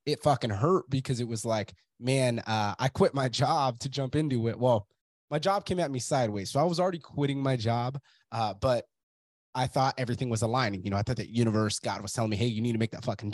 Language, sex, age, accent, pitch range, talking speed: English, male, 20-39, American, 110-130 Hz, 250 wpm